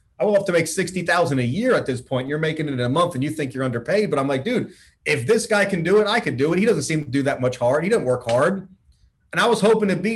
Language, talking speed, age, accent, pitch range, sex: English, 320 wpm, 30-49, American, 130-185 Hz, male